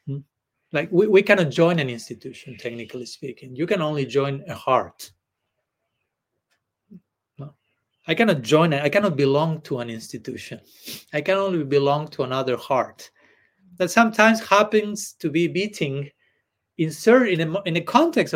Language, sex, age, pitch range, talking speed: English, male, 40-59, 135-180 Hz, 140 wpm